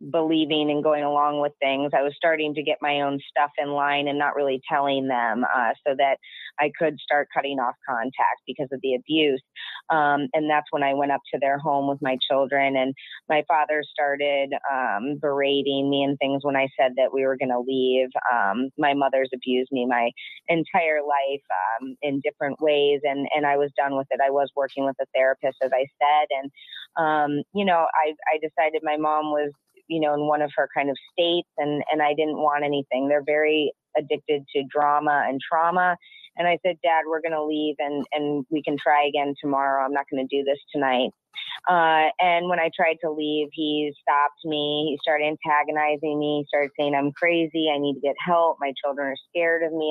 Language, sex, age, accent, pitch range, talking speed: English, female, 30-49, American, 140-155 Hz, 210 wpm